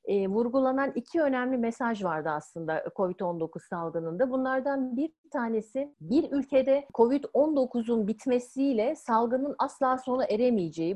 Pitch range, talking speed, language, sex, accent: 200-275 Hz, 105 wpm, Turkish, female, native